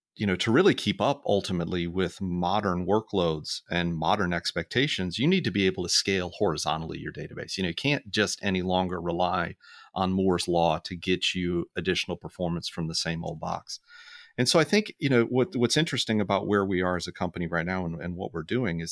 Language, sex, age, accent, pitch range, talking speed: English, male, 40-59, American, 90-120 Hz, 215 wpm